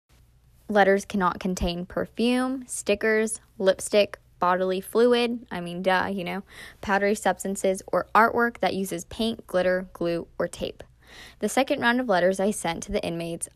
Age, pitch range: 10-29, 170-210 Hz